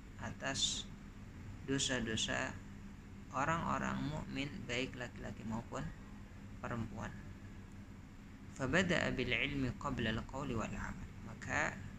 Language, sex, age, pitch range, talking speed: Indonesian, female, 20-39, 100-125 Hz, 60 wpm